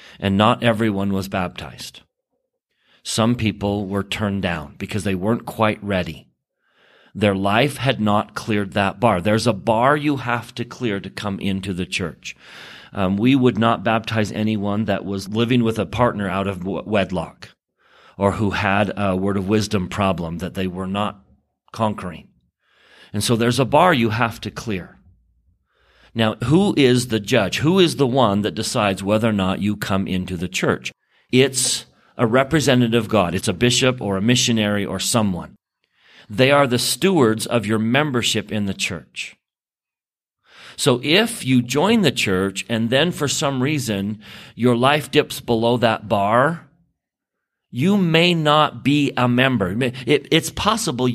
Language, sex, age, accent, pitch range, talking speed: English, male, 40-59, American, 100-130 Hz, 160 wpm